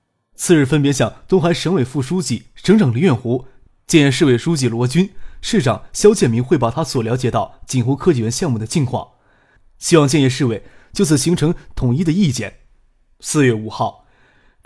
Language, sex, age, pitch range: Chinese, male, 20-39, 120-165 Hz